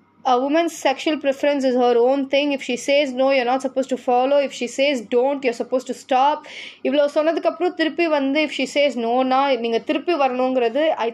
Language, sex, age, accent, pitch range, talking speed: English, female, 20-39, Indian, 250-315 Hz, 200 wpm